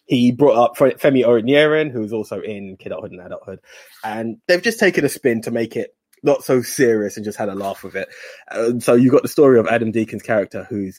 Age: 20-39